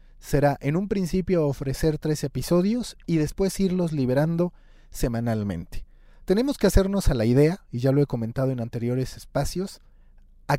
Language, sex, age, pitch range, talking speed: Spanish, male, 40-59, 125-170 Hz, 155 wpm